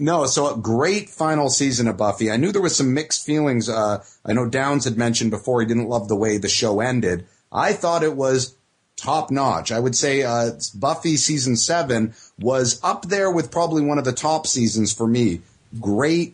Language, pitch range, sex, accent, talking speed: English, 115-150 Hz, male, American, 205 wpm